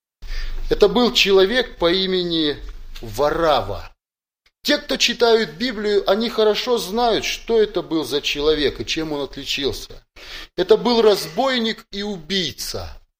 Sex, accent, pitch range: male, native, 125-205 Hz